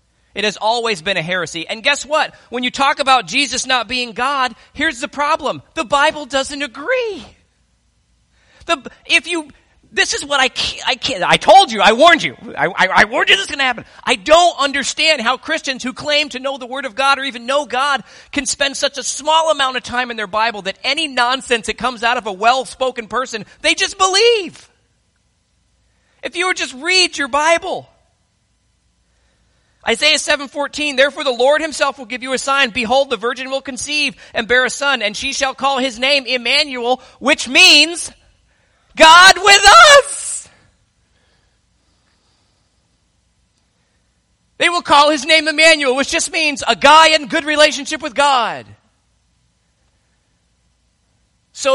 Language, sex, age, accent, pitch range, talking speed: English, male, 40-59, American, 250-310 Hz, 170 wpm